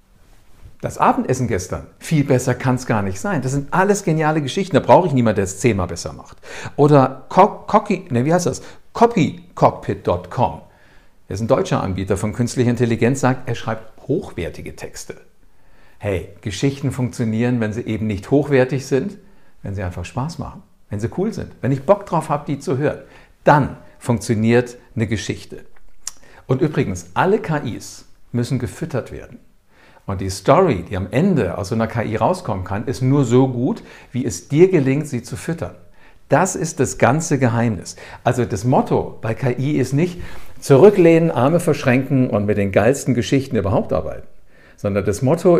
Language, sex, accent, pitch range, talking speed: German, male, German, 105-140 Hz, 170 wpm